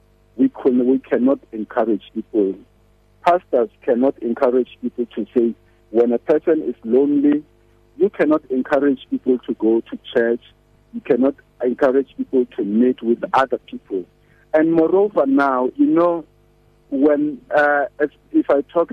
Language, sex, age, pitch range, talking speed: English, male, 50-69, 115-150 Hz, 145 wpm